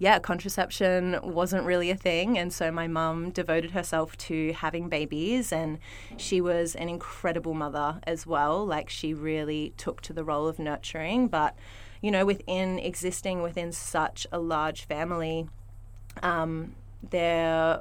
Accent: Australian